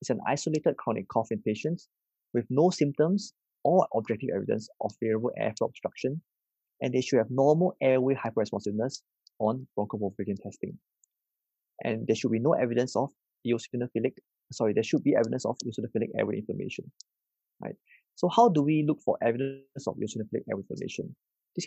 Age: 20-39